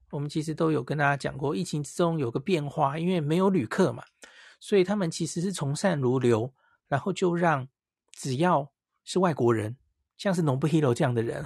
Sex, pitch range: male, 135-175 Hz